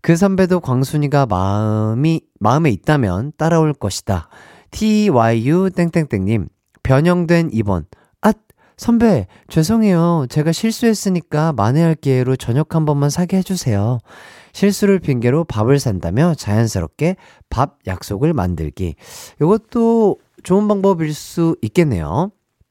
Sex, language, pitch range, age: male, Korean, 110-175 Hz, 40-59